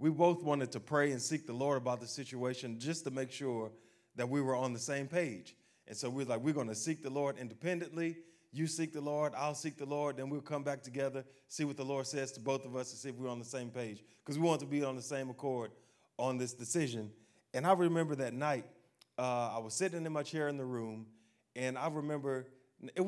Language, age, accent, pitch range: English, 30-49, American, 125-165 Hz